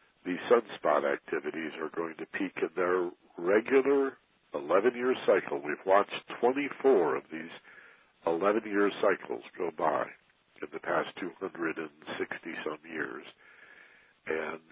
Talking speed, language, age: 120 wpm, English, 60-79